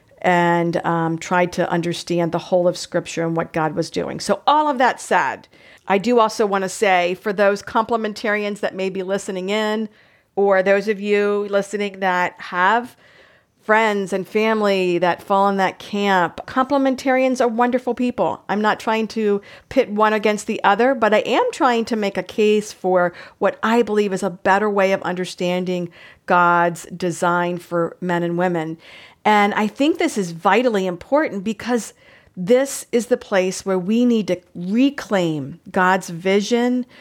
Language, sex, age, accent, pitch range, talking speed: English, female, 50-69, American, 180-220 Hz, 170 wpm